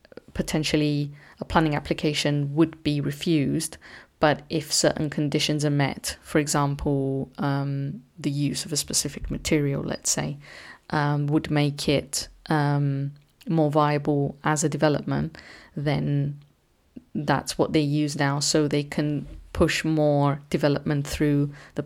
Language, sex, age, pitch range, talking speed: English, female, 30-49, 145-160 Hz, 130 wpm